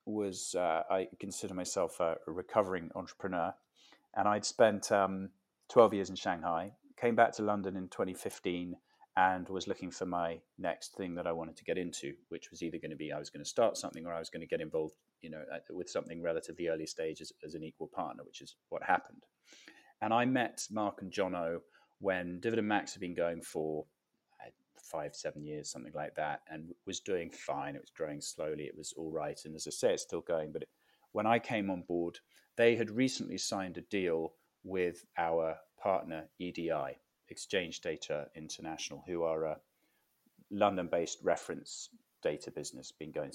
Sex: male